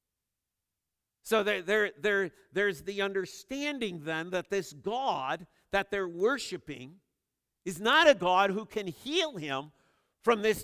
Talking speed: 135 wpm